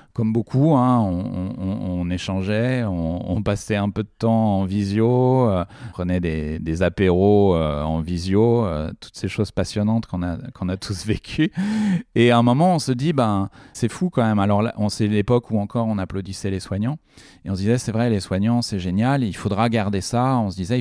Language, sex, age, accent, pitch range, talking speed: French, male, 30-49, French, 100-125 Hz, 220 wpm